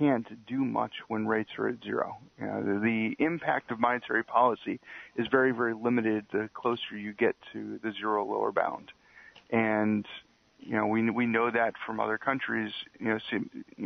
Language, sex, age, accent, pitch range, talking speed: English, male, 40-59, American, 110-125 Hz, 180 wpm